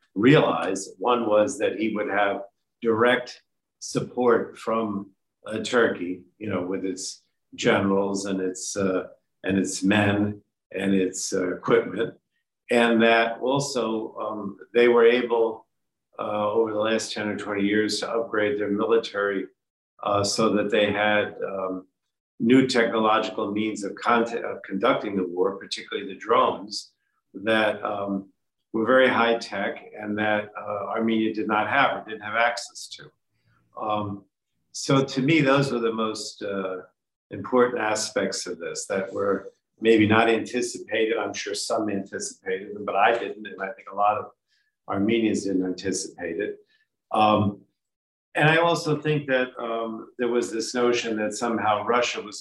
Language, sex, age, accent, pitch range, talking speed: English, male, 50-69, American, 100-120 Hz, 150 wpm